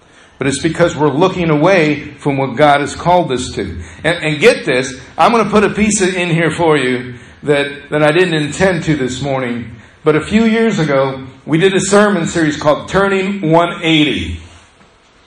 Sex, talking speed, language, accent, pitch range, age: male, 190 wpm, English, American, 130-170 Hz, 50-69